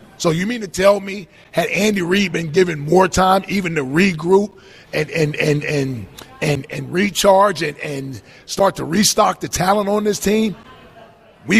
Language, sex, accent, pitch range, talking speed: English, male, American, 175-220 Hz, 175 wpm